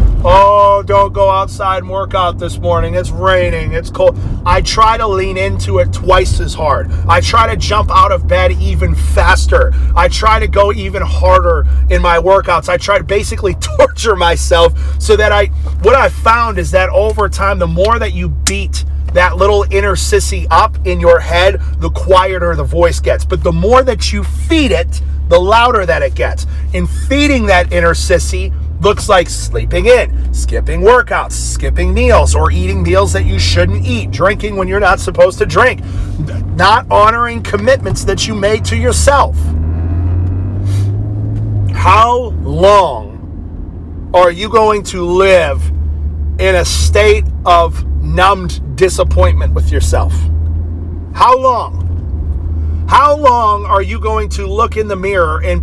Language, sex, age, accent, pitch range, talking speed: English, male, 30-49, American, 75-95 Hz, 160 wpm